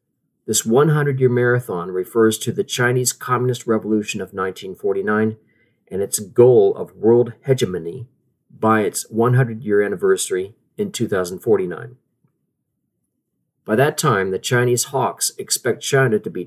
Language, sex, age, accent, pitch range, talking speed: English, male, 40-59, American, 115-140 Hz, 120 wpm